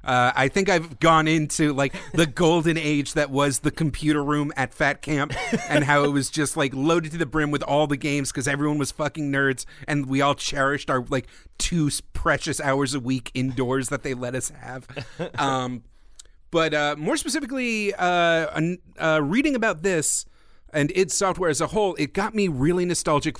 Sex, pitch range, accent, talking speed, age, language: male, 130-160 Hz, American, 190 wpm, 40-59, English